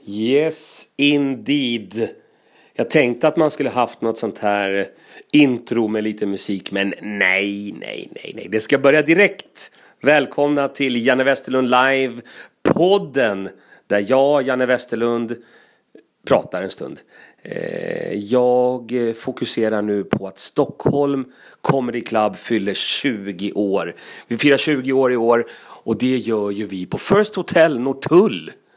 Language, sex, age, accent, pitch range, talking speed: Swedish, male, 30-49, native, 105-145 Hz, 130 wpm